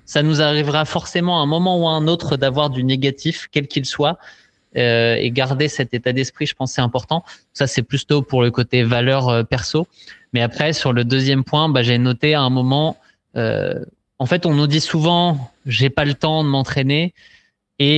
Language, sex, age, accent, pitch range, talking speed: French, male, 20-39, French, 125-150 Hz, 210 wpm